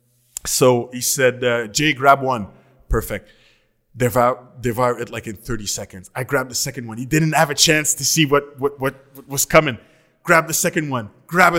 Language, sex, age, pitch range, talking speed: English, male, 20-39, 120-175 Hz, 200 wpm